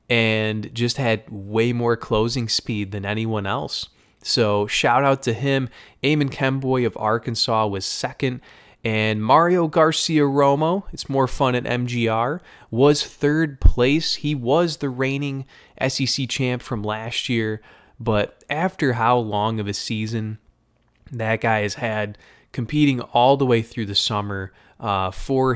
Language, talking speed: English, 145 wpm